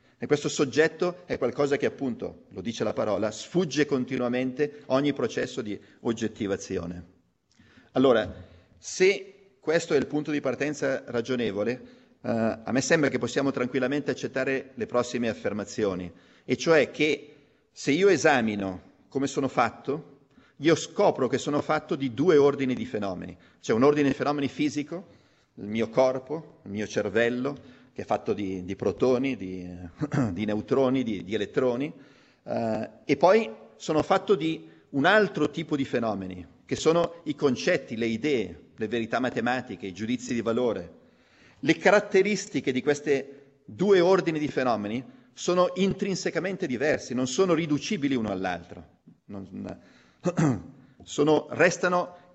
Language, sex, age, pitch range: Italian, male, 40-59, 110-155 Hz